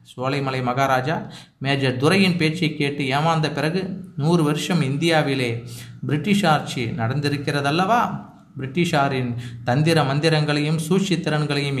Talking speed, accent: 90 wpm, native